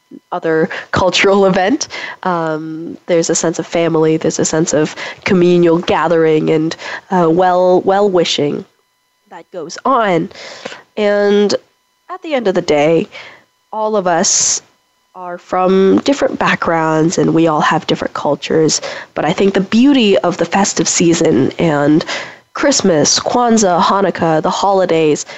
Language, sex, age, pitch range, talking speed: English, female, 20-39, 165-205 Hz, 140 wpm